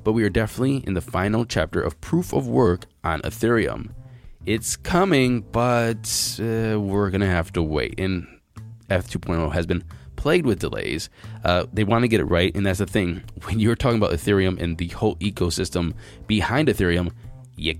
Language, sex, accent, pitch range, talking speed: English, male, American, 90-115 Hz, 180 wpm